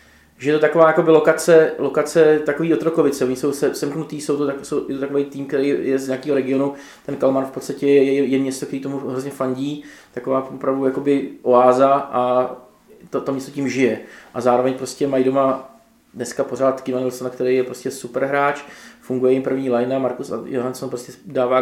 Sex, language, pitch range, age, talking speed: male, Czech, 125-140 Hz, 20-39, 170 wpm